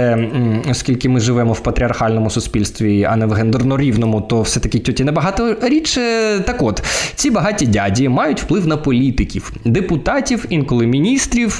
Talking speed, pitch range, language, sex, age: 150 wpm, 115-170 Hz, Ukrainian, male, 20-39